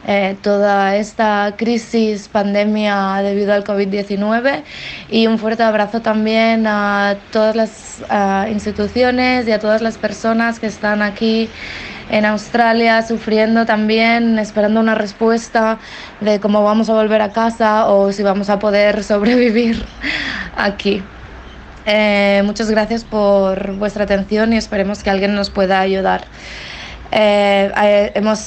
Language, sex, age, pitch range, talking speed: English, female, 20-39, 200-220 Hz, 130 wpm